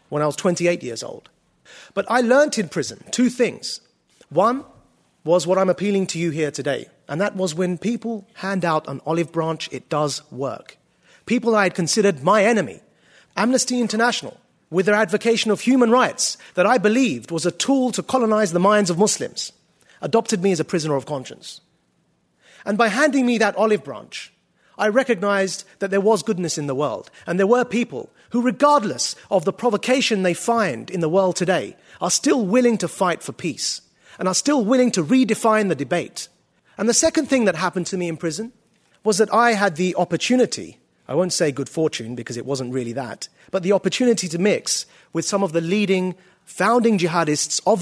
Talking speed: 190 wpm